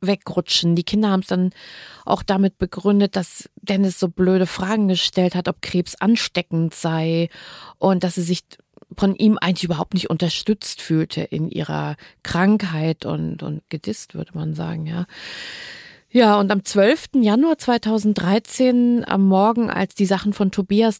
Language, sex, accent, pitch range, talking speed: German, female, German, 175-205 Hz, 155 wpm